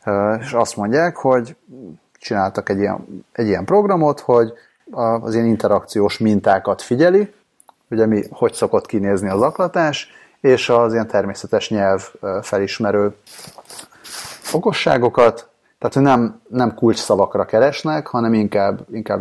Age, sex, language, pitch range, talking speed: 30-49, male, Hungarian, 105-120 Hz, 120 wpm